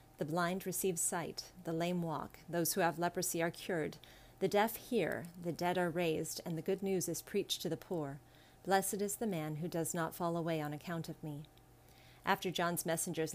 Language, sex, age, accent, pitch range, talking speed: English, female, 40-59, American, 160-185 Hz, 200 wpm